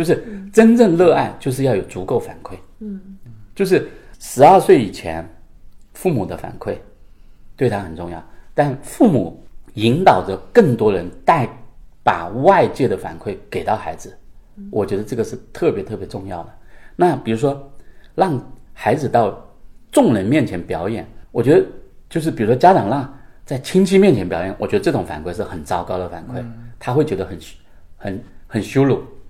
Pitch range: 90-155 Hz